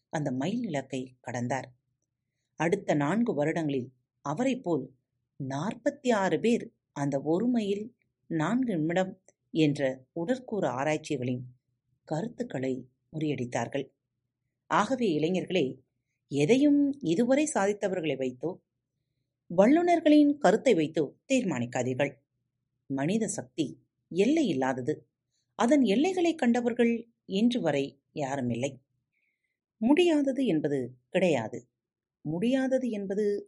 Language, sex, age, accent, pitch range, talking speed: Tamil, female, 30-49, native, 130-205 Hz, 80 wpm